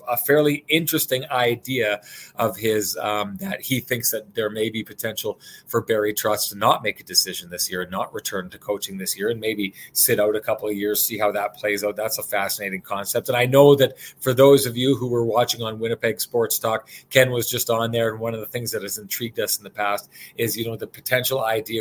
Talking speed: 240 wpm